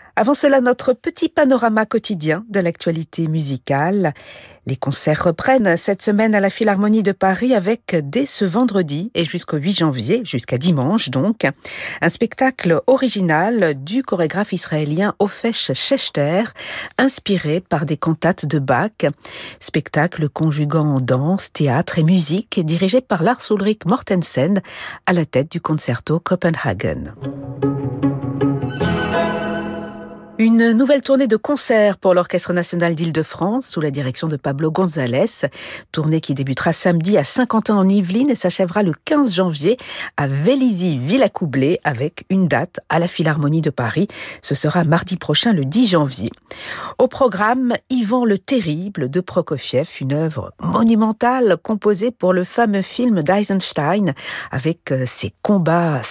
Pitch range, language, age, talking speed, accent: 155-220 Hz, French, 50-69, 135 wpm, French